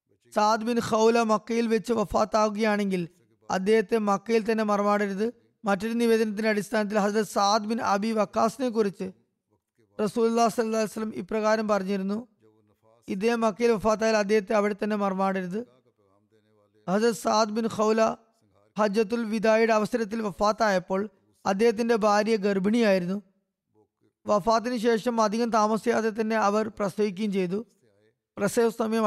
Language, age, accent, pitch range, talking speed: Malayalam, 20-39, native, 195-225 Hz, 105 wpm